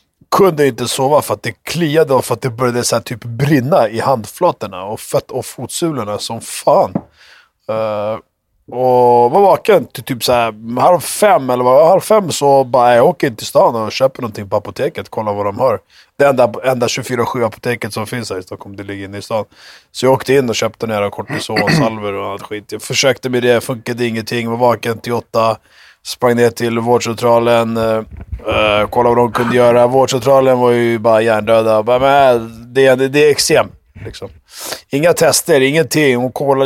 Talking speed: 190 wpm